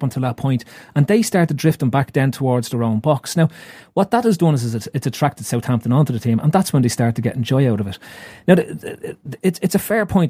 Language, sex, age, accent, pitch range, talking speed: English, male, 30-49, Irish, 125-165 Hz, 285 wpm